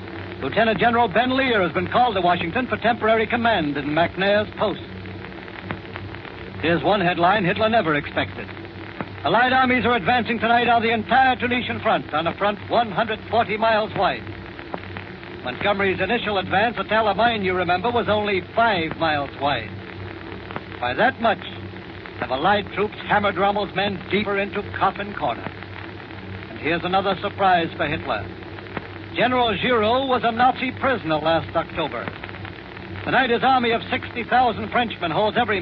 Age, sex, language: 70-89, male, English